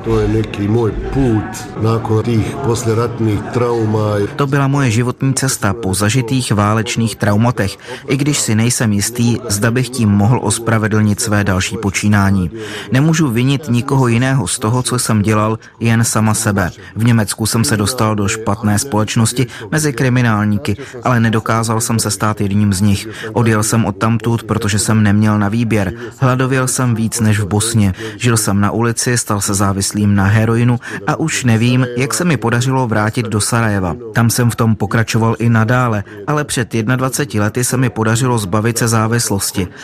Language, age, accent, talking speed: Czech, 30-49, native, 155 wpm